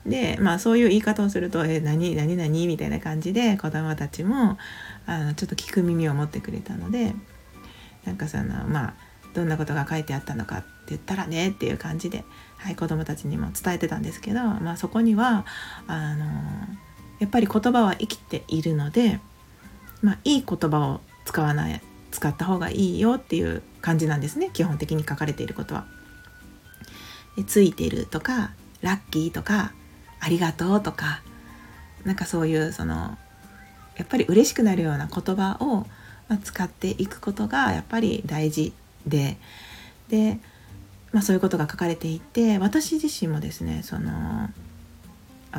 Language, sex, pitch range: Japanese, female, 150-215 Hz